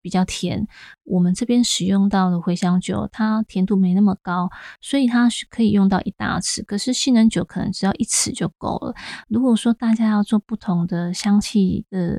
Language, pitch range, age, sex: Chinese, 185-220 Hz, 20-39, female